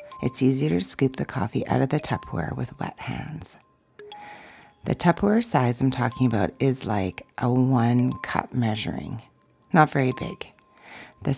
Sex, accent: female, American